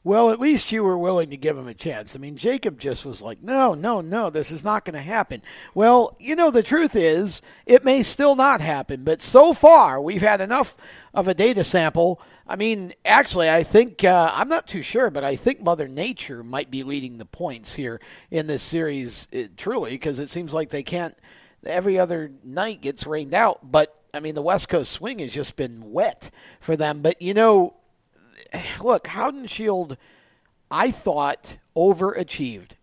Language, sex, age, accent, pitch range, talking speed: English, male, 50-69, American, 150-215 Hz, 195 wpm